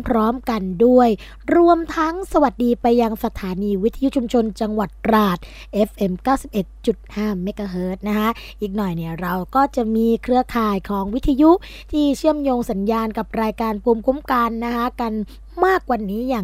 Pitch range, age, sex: 210-260 Hz, 20-39, female